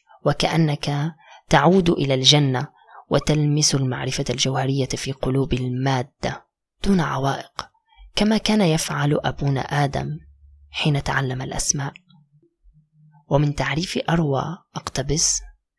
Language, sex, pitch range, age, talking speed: Arabic, female, 135-165 Hz, 20-39, 90 wpm